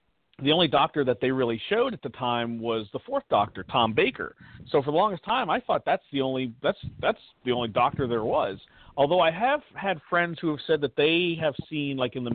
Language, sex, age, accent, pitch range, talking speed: English, male, 40-59, American, 120-170 Hz, 235 wpm